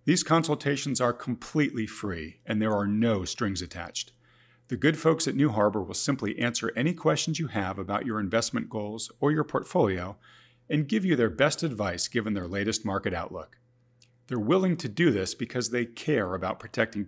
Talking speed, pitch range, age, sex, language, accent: 185 wpm, 100-130 Hz, 40-59, male, English, American